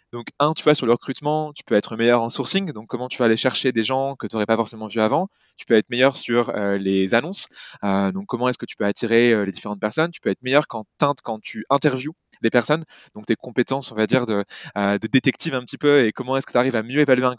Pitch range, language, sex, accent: 115-145 Hz, English, male, French